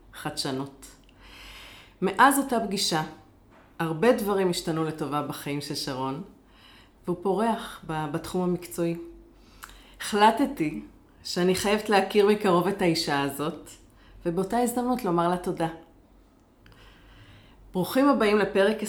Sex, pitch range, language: female, 160-205 Hz, Hebrew